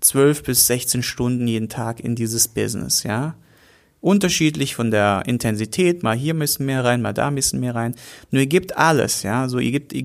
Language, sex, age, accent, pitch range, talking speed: German, male, 30-49, German, 125-170 Hz, 195 wpm